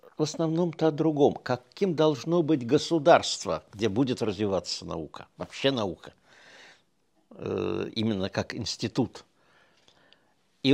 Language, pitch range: Russian, 120-170 Hz